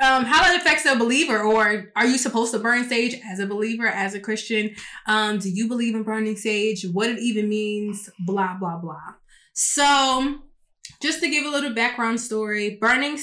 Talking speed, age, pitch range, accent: 190 wpm, 20-39, 200-235 Hz, American